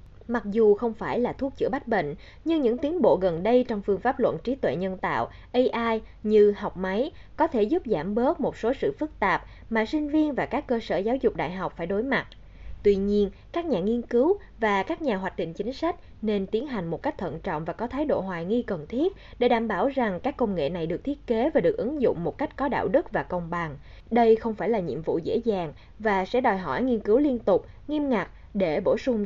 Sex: female